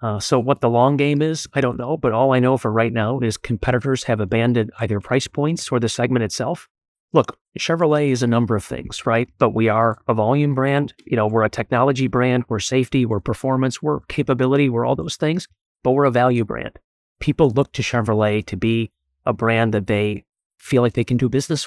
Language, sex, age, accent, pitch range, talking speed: English, male, 30-49, American, 115-140 Hz, 220 wpm